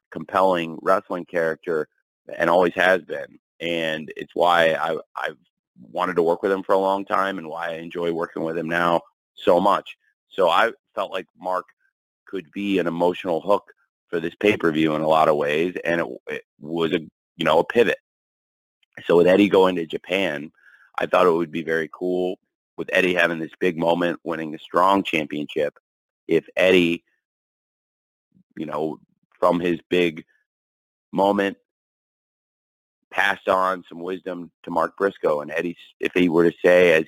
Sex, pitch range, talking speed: male, 80-90 Hz, 170 wpm